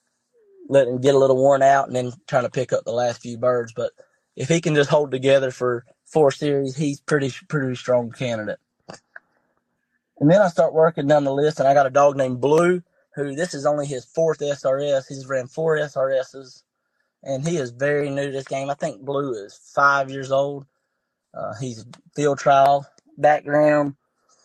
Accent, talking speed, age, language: American, 190 wpm, 30-49, English